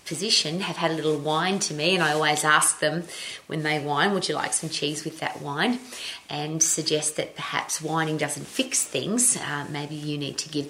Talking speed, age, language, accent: 215 wpm, 30-49, English, Australian